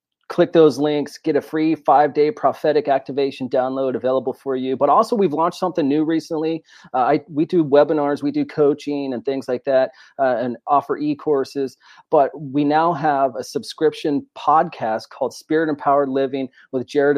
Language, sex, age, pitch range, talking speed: English, male, 30-49, 130-150 Hz, 170 wpm